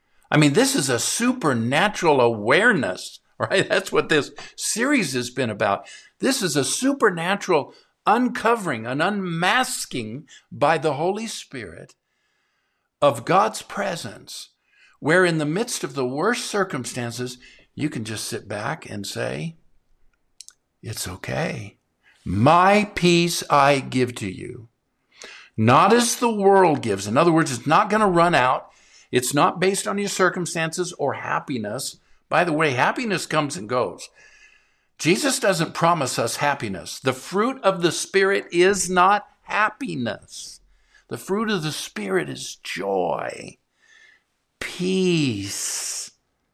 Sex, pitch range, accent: male, 135-210 Hz, American